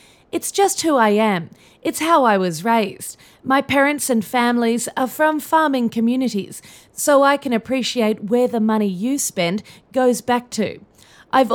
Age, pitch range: 30-49, 200-250 Hz